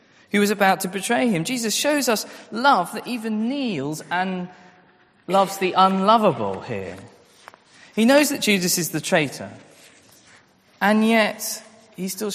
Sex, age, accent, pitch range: male, 20-39, British, 130-180 Hz